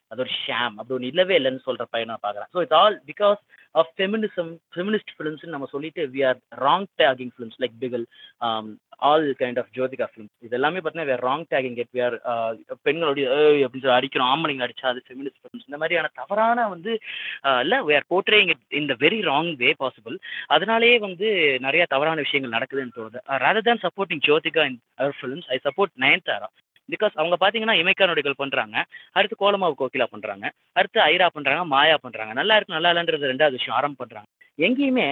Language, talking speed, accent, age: Tamil, 130 wpm, native, 20-39